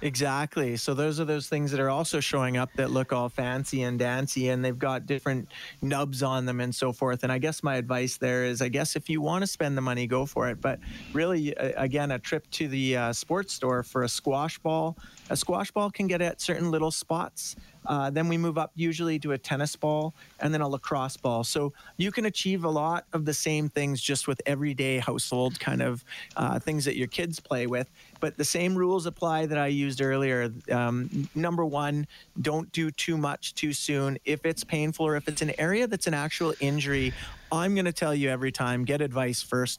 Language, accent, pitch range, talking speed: English, American, 125-155 Hz, 220 wpm